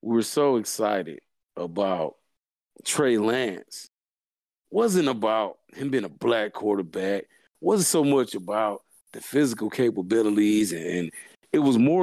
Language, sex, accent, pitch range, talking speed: English, male, American, 105-145 Hz, 130 wpm